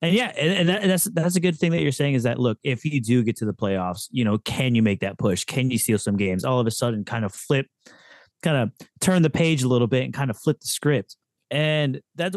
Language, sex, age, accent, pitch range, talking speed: English, male, 30-49, American, 115-160 Hz, 280 wpm